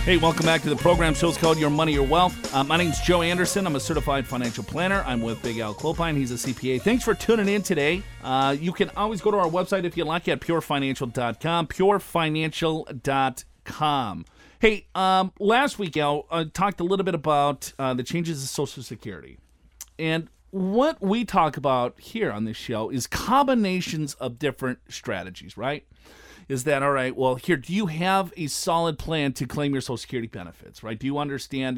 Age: 40-59